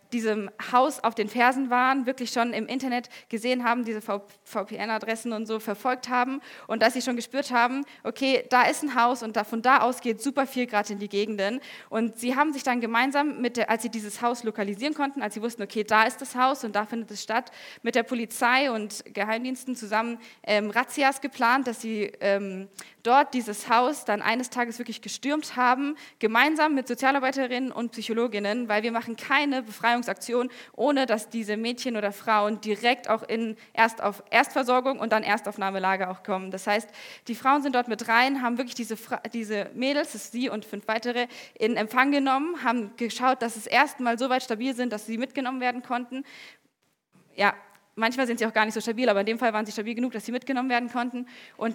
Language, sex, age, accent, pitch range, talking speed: German, female, 20-39, German, 215-255 Hz, 200 wpm